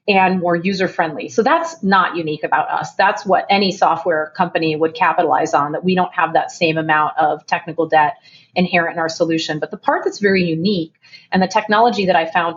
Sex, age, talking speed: female, 30-49, 205 wpm